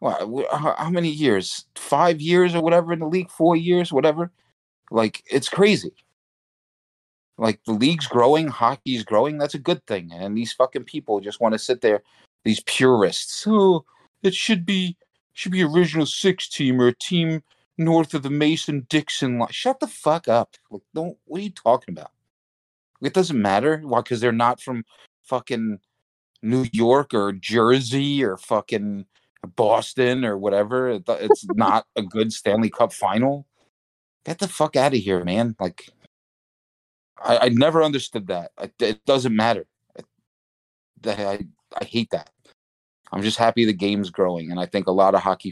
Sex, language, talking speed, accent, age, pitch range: male, English, 170 wpm, American, 40-59, 105-155 Hz